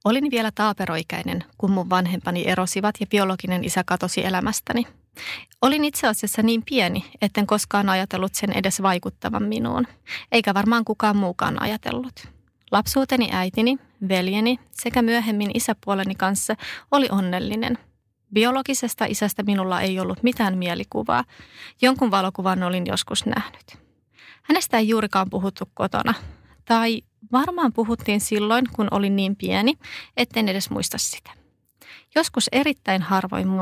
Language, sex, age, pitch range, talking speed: Finnish, female, 30-49, 190-230 Hz, 125 wpm